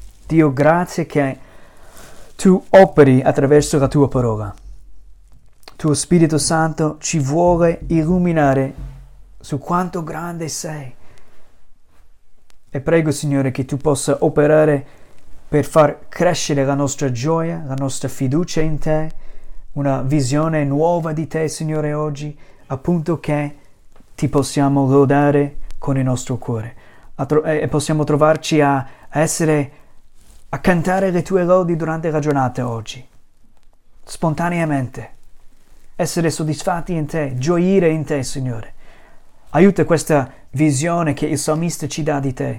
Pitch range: 135-160 Hz